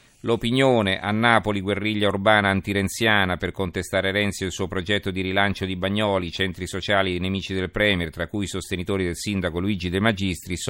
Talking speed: 180 wpm